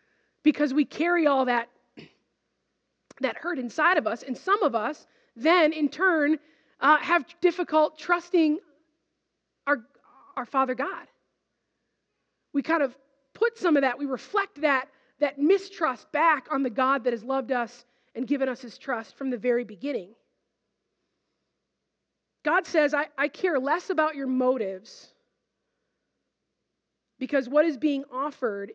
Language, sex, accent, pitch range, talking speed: English, female, American, 245-305 Hz, 140 wpm